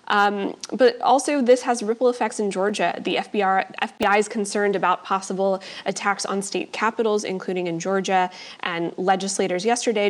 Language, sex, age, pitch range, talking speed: English, female, 20-39, 185-220 Hz, 155 wpm